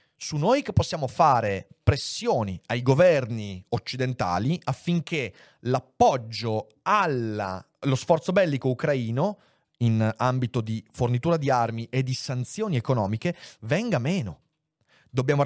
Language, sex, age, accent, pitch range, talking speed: Italian, male, 30-49, native, 125-170 Hz, 110 wpm